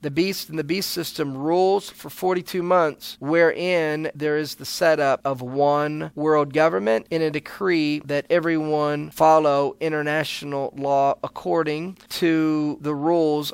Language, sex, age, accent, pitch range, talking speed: English, male, 40-59, American, 150-180 Hz, 135 wpm